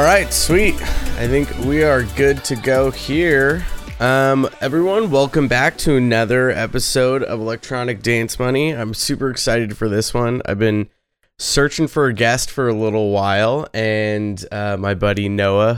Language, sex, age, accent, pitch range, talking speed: English, male, 20-39, American, 105-130 Hz, 160 wpm